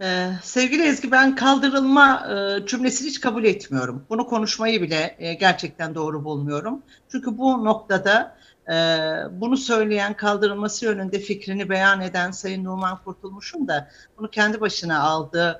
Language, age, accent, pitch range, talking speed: Turkish, 60-79, native, 170-225 Hz, 140 wpm